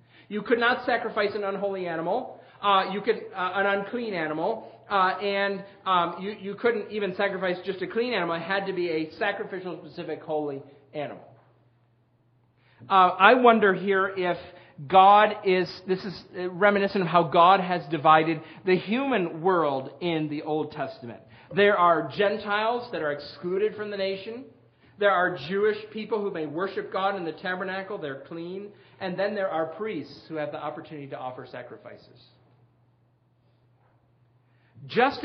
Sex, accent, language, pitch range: male, American, English, 160-205 Hz